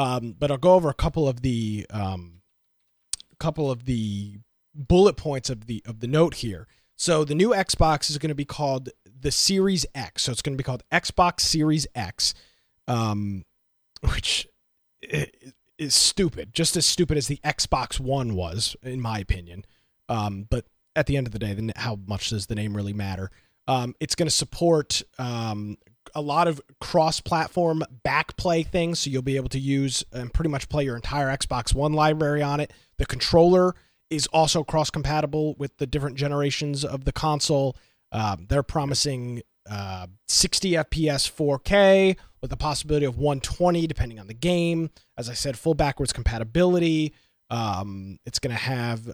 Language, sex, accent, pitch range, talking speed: English, male, American, 115-155 Hz, 170 wpm